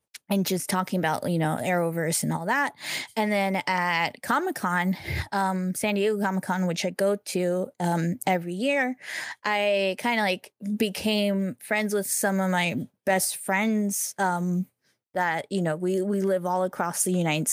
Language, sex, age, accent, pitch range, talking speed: English, female, 10-29, American, 185-215 Hz, 160 wpm